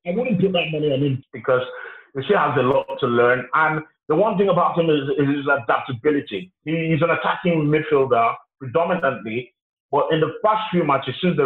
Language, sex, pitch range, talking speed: English, male, 140-185 Hz, 215 wpm